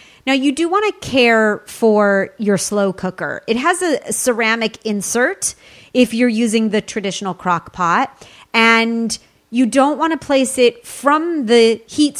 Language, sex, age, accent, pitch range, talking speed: English, female, 30-49, American, 205-260 Hz, 155 wpm